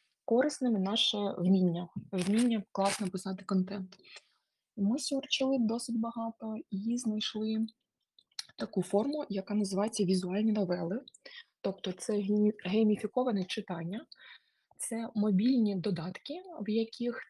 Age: 20-39